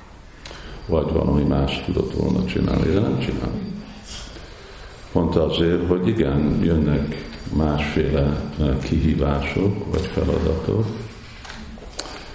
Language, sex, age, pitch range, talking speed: Hungarian, male, 50-69, 75-90 Hz, 85 wpm